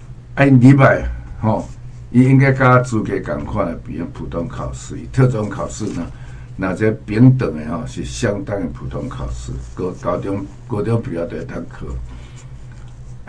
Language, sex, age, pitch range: Chinese, male, 60-79, 105-125 Hz